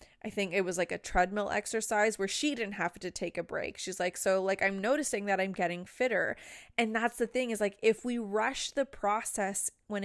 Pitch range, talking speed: 180-210 Hz, 225 wpm